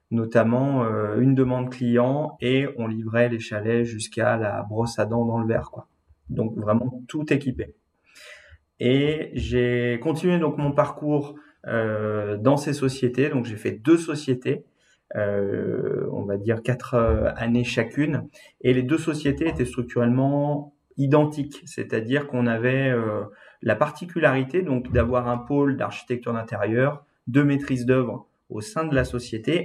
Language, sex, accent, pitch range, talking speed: French, male, French, 115-145 Hz, 140 wpm